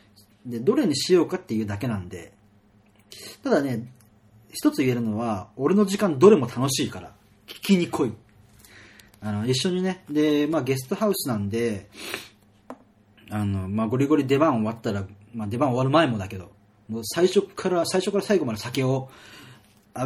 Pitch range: 105-135 Hz